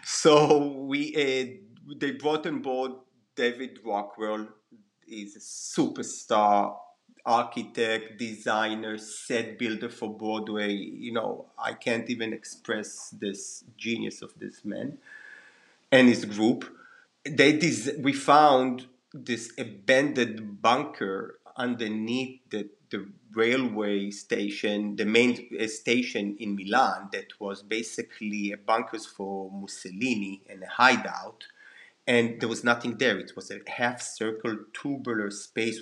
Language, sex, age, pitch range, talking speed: English, male, 30-49, 105-125 Hz, 120 wpm